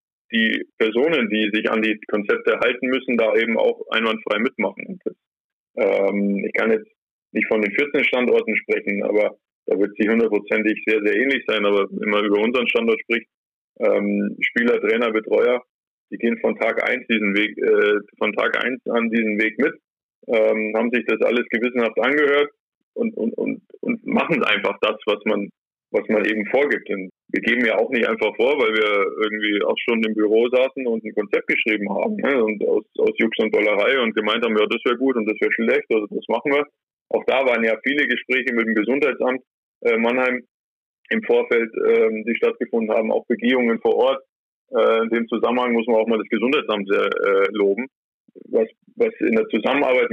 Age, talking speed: 20-39, 190 wpm